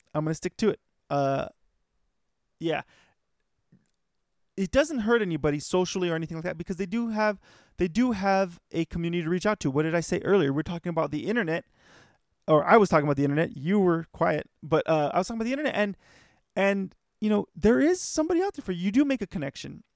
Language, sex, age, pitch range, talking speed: English, male, 20-39, 150-205 Hz, 225 wpm